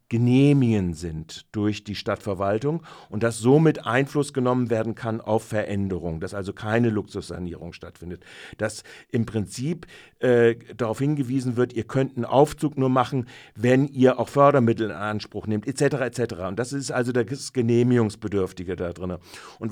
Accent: German